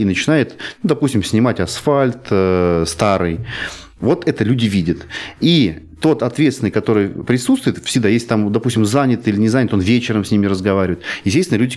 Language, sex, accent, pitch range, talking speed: Russian, male, native, 95-130 Hz, 165 wpm